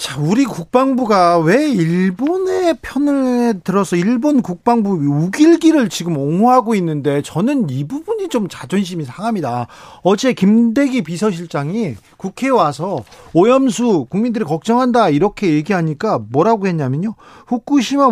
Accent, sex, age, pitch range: native, male, 40-59, 160-240 Hz